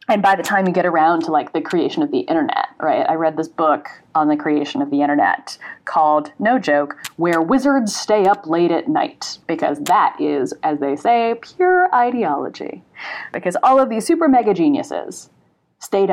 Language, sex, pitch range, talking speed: English, female, 155-245 Hz, 190 wpm